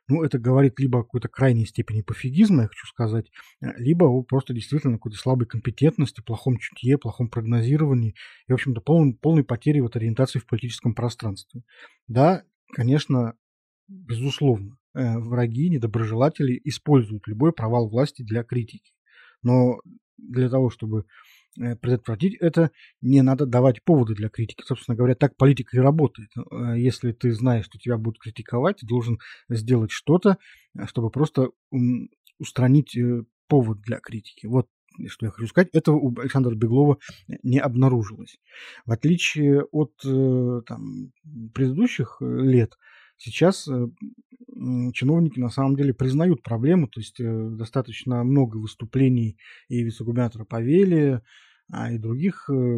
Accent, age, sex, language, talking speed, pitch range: native, 20-39, male, Russian, 130 wpm, 115-140 Hz